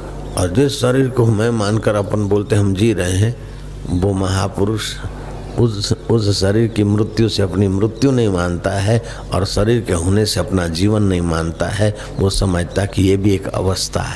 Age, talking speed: 60-79, 180 wpm